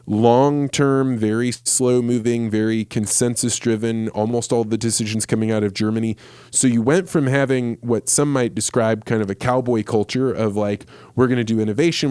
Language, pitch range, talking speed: English, 110-130 Hz, 185 wpm